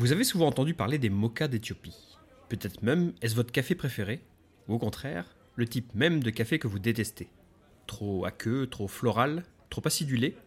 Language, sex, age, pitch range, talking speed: French, male, 30-49, 105-155 Hz, 180 wpm